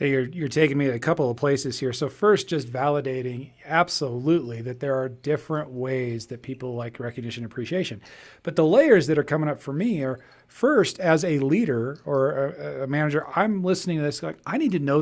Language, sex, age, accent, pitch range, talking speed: English, male, 40-59, American, 125-155 Hz, 210 wpm